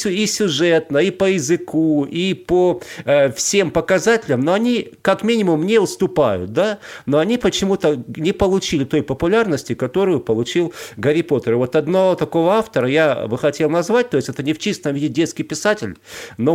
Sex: male